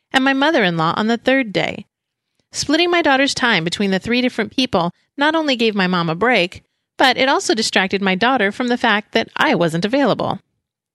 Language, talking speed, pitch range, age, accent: English, 195 wpm, 190-270 Hz, 30-49, American